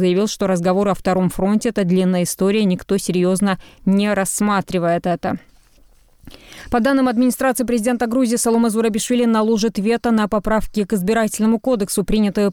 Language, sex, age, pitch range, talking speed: Russian, female, 20-39, 195-220 Hz, 145 wpm